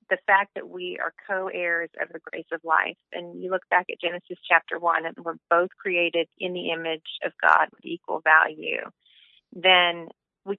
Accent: American